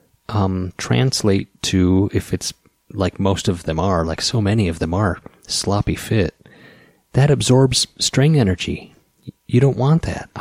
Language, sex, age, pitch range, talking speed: English, male, 30-49, 85-110 Hz, 155 wpm